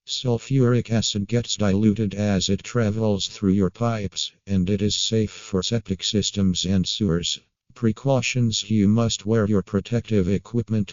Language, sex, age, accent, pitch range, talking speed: English, male, 50-69, American, 95-110 Hz, 145 wpm